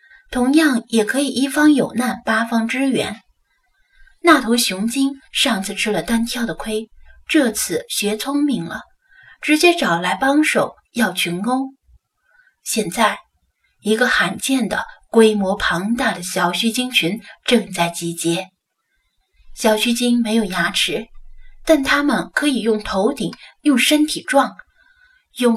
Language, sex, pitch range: Chinese, female, 200-290 Hz